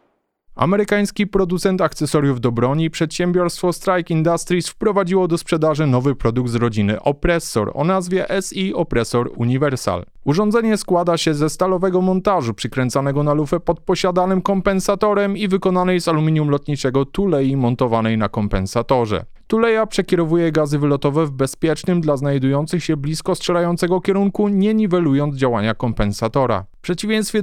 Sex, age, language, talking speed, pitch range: male, 20-39, Polish, 130 wpm, 130-185 Hz